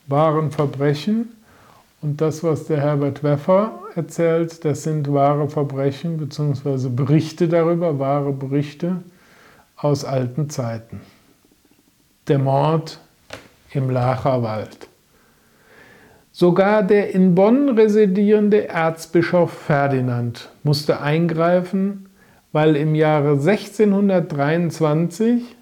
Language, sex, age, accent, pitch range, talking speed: German, male, 50-69, German, 145-180 Hz, 90 wpm